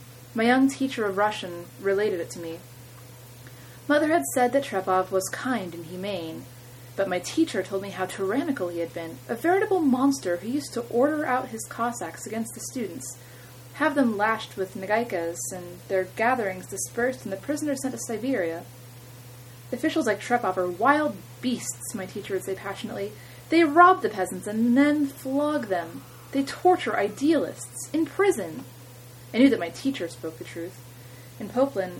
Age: 30-49